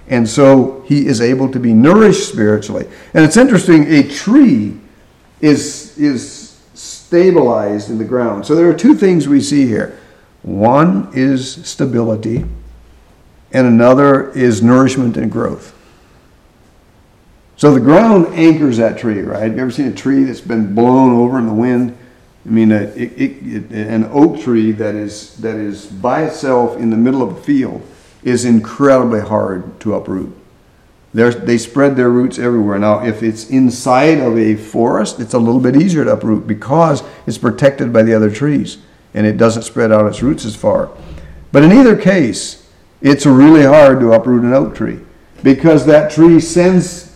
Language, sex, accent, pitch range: English, male, American, 110-145 Hz